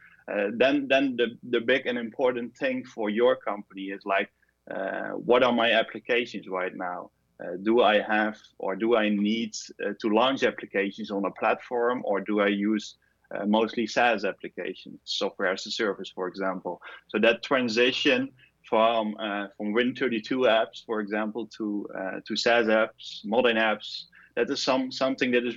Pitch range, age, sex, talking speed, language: 105-125 Hz, 20-39, male, 170 wpm, English